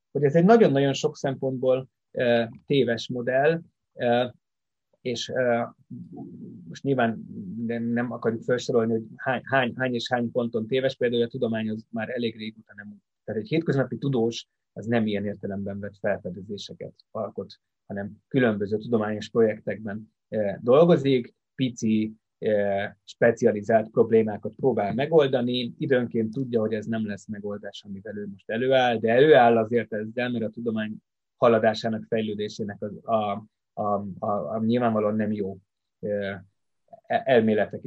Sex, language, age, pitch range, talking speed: male, Hungarian, 30-49, 105-125 Hz, 125 wpm